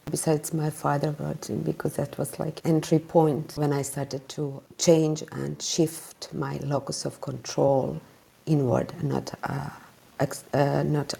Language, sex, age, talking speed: English, female, 50-69, 135 wpm